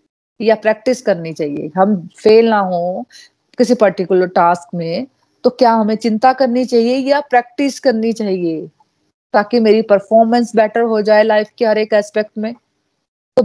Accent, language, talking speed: native, Hindi, 155 wpm